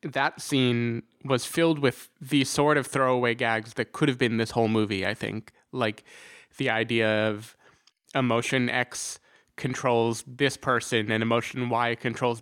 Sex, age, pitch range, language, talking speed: male, 20-39, 115-135 Hz, English, 155 wpm